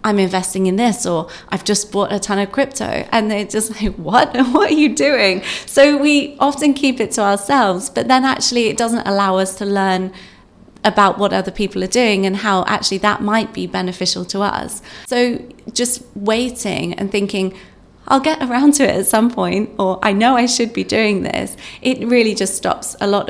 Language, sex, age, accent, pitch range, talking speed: English, female, 30-49, British, 190-235 Hz, 205 wpm